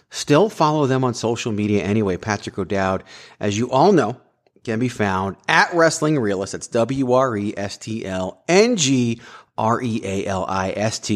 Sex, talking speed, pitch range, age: male, 115 wpm, 95-135 Hz, 30-49